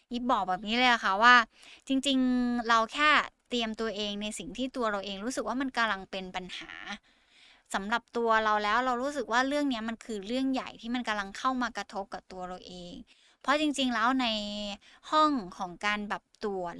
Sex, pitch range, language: female, 205-255 Hz, Thai